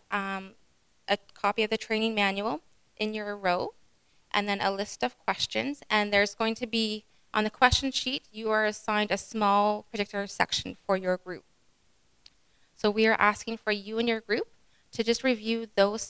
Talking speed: 180 wpm